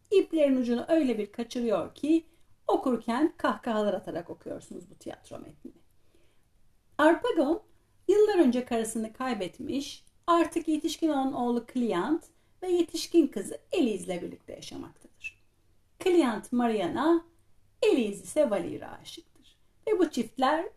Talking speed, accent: 115 wpm, native